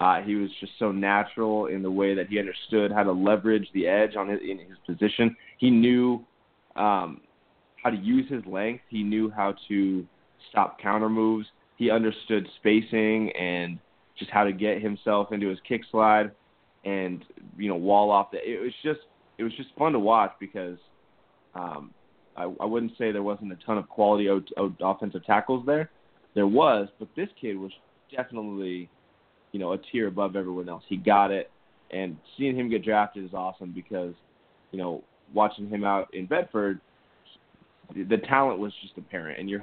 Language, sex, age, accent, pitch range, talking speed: English, male, 20-39, American, 95-110 Hz, 185 wpm